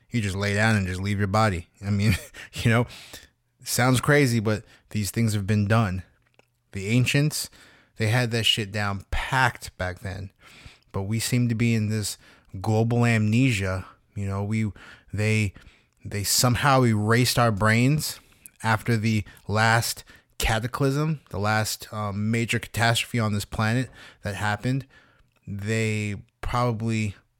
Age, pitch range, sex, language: 20-39, 100-115 Hz, male, English